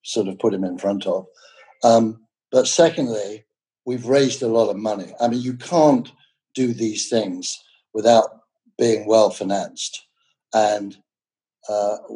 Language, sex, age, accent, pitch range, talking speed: English, male, 60-79, British, 115-165 Hz, 150 wpm